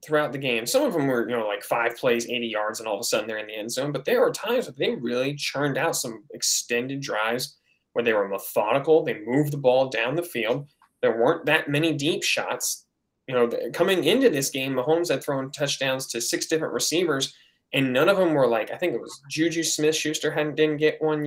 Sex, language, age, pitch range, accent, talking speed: male, English, 10-29, 125-155 Hz, American, 230 wpm